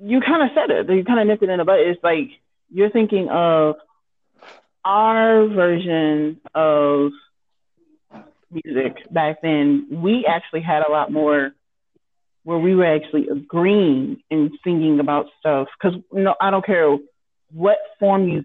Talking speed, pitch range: 155 wpm, 150-200 Hz